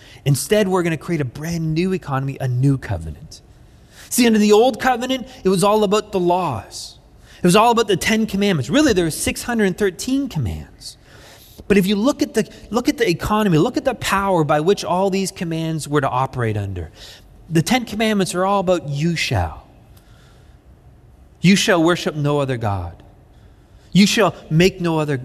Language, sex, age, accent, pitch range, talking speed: English, male, 30-49, American, 130-200 Hz, 185 wpm